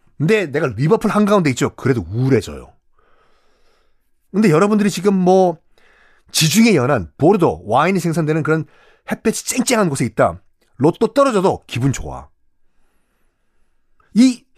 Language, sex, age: Korean, male, 30-49